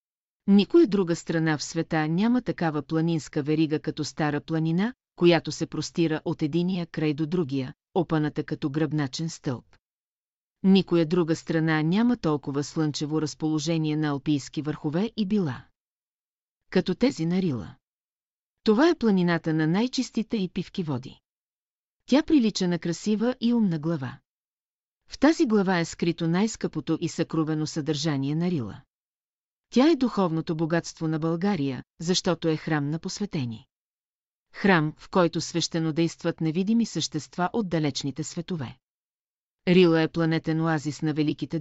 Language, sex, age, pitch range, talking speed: Bulgarian, female, 40-59, 155-180 Hz, 135 wpm